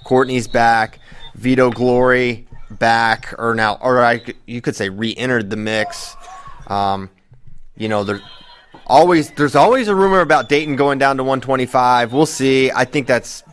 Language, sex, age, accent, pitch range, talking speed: English, male, 30-49, American, 110-140 Hz, 155 wpm